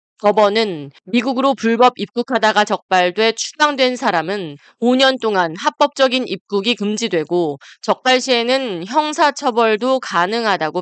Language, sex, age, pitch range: Korean, female, 20-39, 180-250 Hz